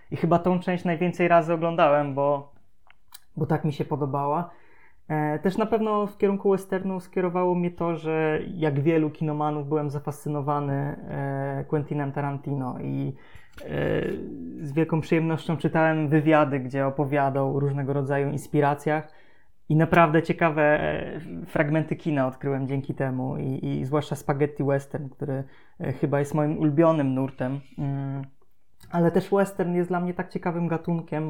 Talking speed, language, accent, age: 135 wpm, Polish, native, 20-39